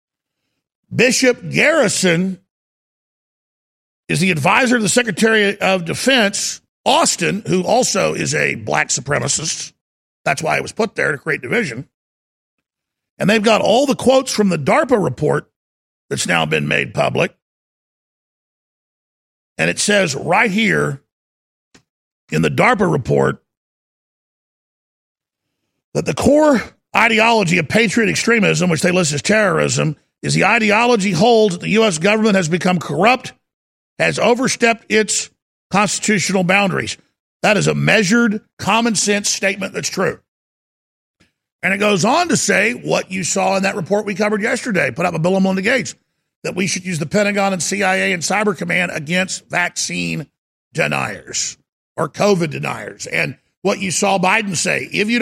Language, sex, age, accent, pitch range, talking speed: English, male, 50-69, American, 175-215 Hz, 145 wpm